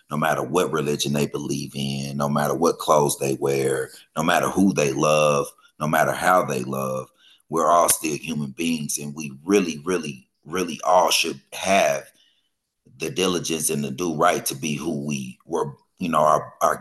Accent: American